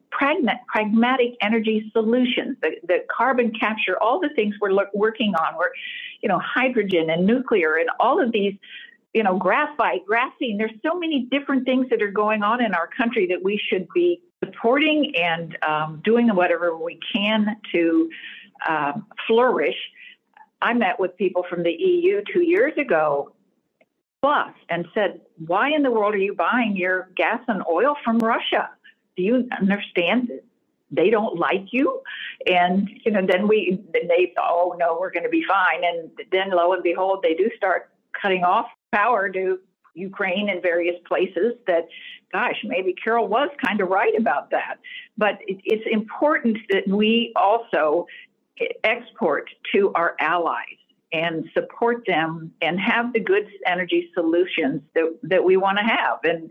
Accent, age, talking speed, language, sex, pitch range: American, 60-79, 165 wpm, English, female, 180-260 Hz